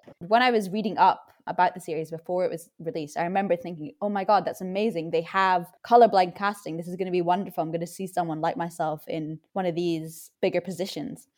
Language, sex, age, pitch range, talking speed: English, female, 20-39, 165-200 Hz, 225 wpm